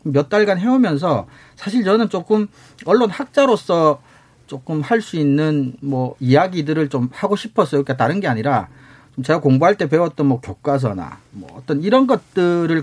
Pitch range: 125-190 Hz